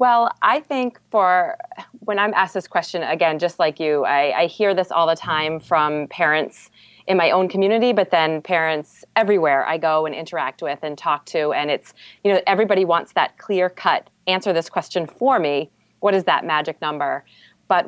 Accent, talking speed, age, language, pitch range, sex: American, 195 wpm, 30-49, English, 160-195 Hz, female